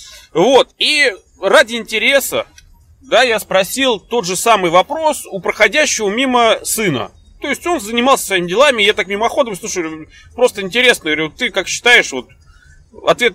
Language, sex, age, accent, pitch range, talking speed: Russian, male, 30-49, native, 165-240 Hz, 155 wpm